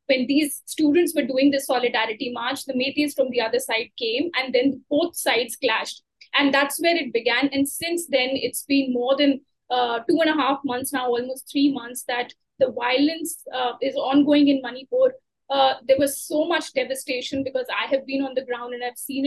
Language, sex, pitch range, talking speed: Urdu, female, 255-290 Hz, 205 wpm